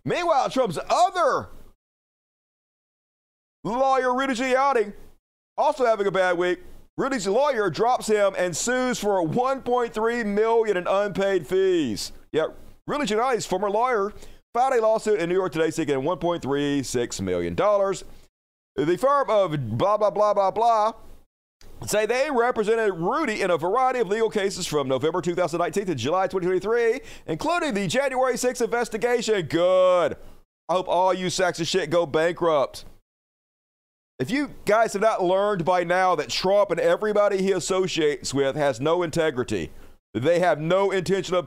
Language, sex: English, male